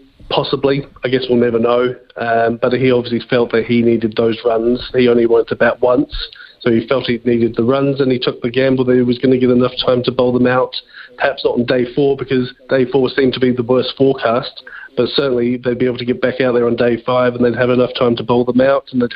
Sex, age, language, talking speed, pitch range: male, 40-59, English, 260 wpm, 125-135 Hz